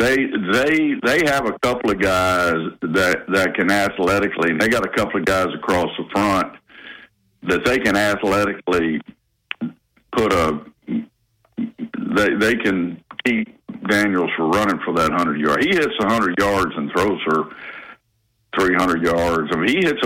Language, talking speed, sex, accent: English, 160 wpm, male, American